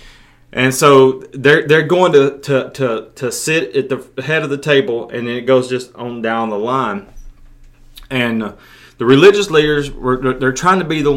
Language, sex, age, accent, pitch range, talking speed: English, male, 30-49, American, 115-140 Hz, 185 wpm